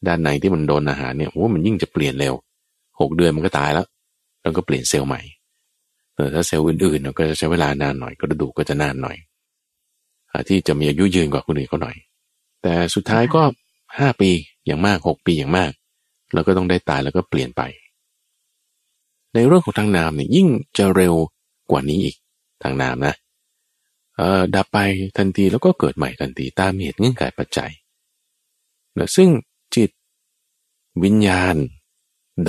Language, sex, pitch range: Thai, male, 75-100 Hz